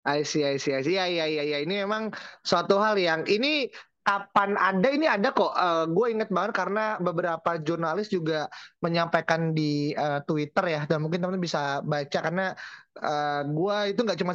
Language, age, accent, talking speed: Indonesian, 20-39, native, 145 wpm